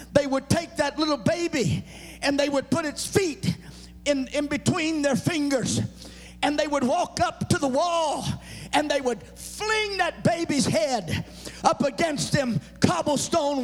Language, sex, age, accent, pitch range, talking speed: English, male, 50-69, American, 265-345 Hz, 160 wpm